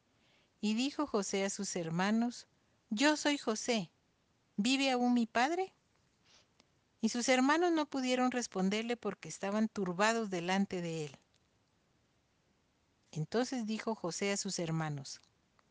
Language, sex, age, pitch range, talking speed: Spanish, female, 50-69, 170-220 Hz, 120 wpm